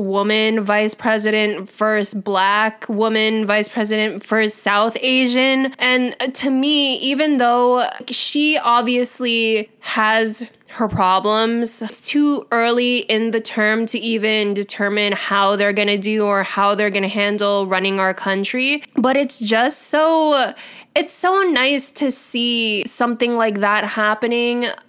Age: 10-29